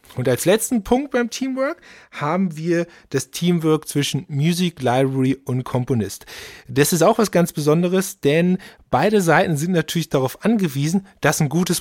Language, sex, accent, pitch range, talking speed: German, male, German, 135-185 Hz, 160 wpm